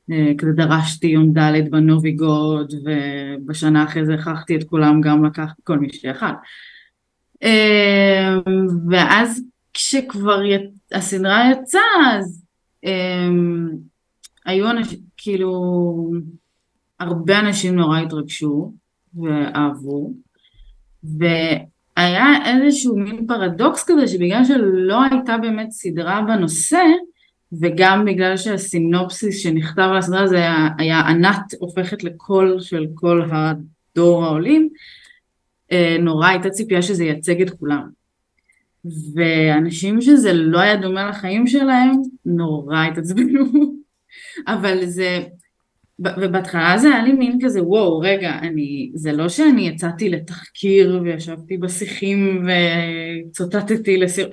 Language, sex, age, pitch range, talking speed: Hebrew, female, 20-39, 160-205 Hz, 105 wpm